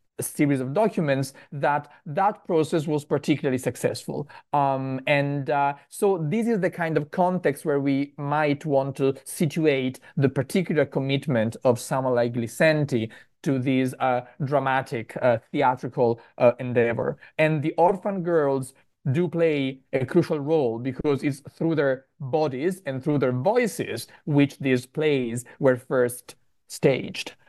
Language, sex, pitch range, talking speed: English, male, 130-155 Hz, 140 wpm